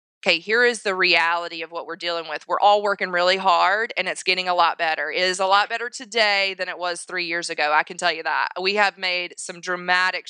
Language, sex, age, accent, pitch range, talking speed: English, female, 20-39, American, 180-220 Hz, 250 wpm